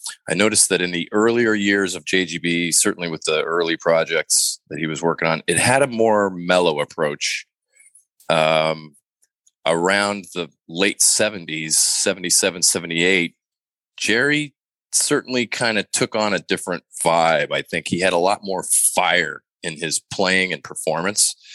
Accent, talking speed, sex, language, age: American, 150 wpm, male, English, 30-49